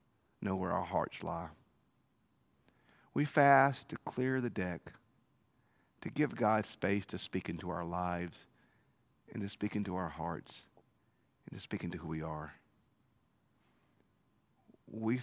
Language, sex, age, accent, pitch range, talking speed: English, male, 50-69, American, 90-120 Hz, 135 wpm